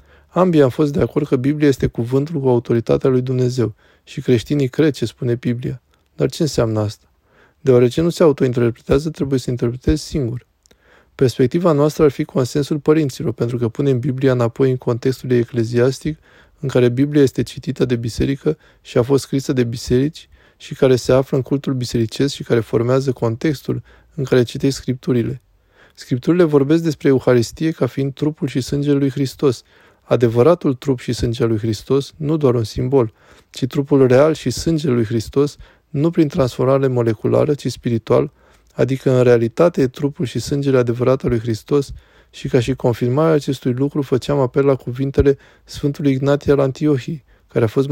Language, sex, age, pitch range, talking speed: Romanian, male, 20-39, 120-145 Hz, 170 wpm